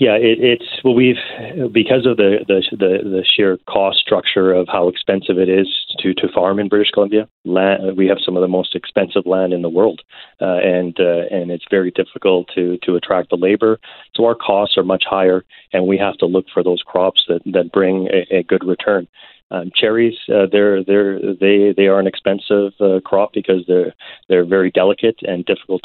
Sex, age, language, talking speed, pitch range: male, 30-49, English, 205 wpm, 90-100 Hz